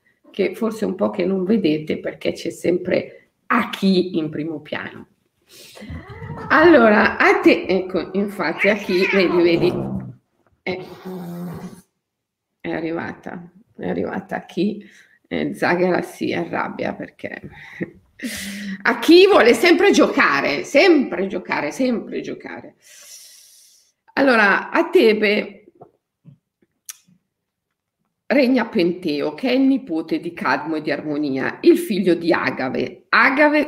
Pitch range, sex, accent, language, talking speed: 180-275 Hz, female, native, Italian, 115 wpm